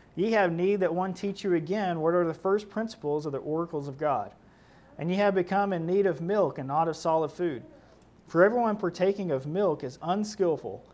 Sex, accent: male, American